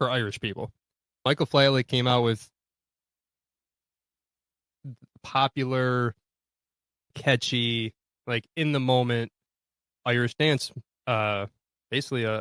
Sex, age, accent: male, 20-39, American